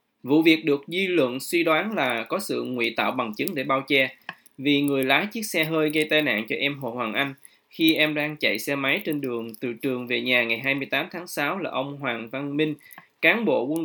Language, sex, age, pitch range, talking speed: Vietnamese, male, 20-39, 130-160 Hz, 240 wpm